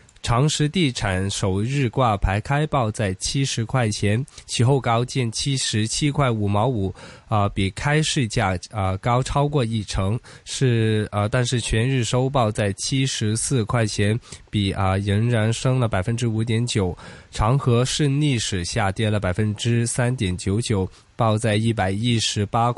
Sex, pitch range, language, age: male, 105-130 Hz, Chinese, 20-39